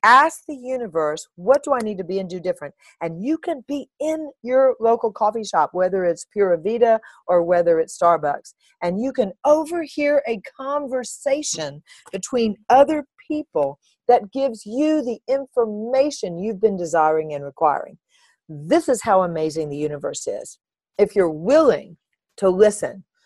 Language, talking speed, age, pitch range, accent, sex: English, 155 wpm, 40-59, 185-260 Hz, American, female